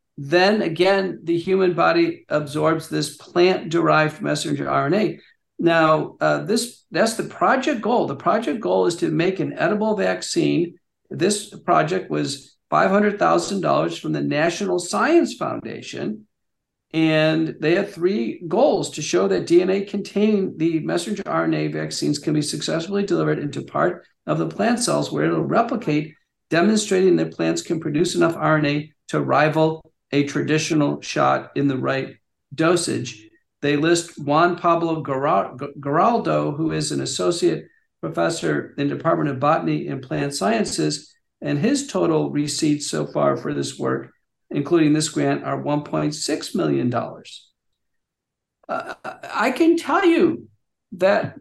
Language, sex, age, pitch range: English, male, 50-69, 140-190 Hz